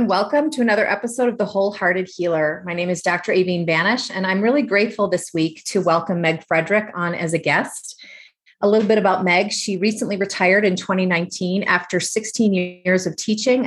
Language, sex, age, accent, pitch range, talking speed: English, female, 30-49, American, 175-215 Hz, 190 wpm